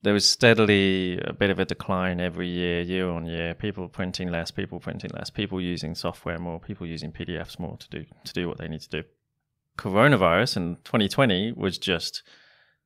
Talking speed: 190 wpm